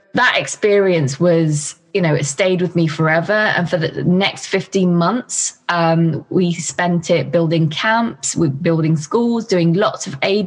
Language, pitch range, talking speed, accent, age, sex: English, 160-190 Hz, 160 wpm, British, 20-39, female